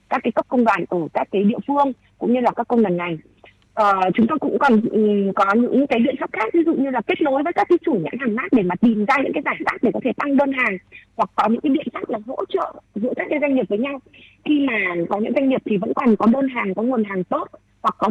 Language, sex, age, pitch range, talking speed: Vietnamese, female, 20-39, 190-260 Hz, 300 wpm